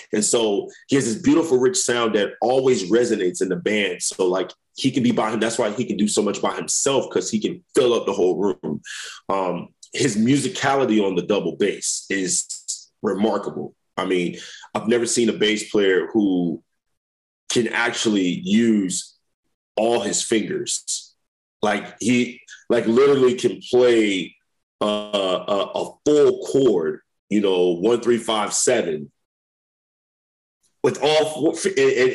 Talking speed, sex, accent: 155 wpm, male, American